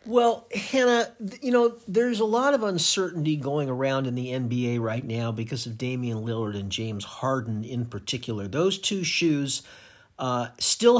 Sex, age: male, 50-69